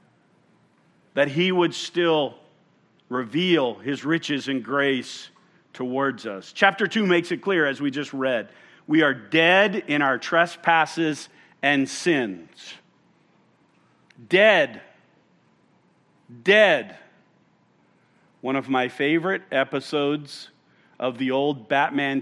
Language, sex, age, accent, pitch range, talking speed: English, male, 50-69, American, 140-180 Hz, 105 wpm